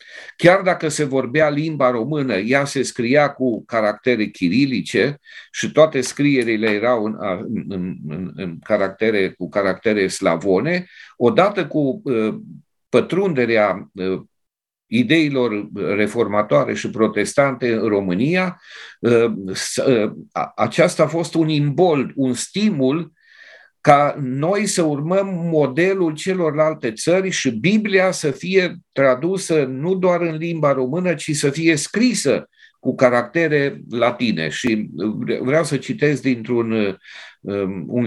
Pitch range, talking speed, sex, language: 120-175 Hz, 100 wpm, male, Romanian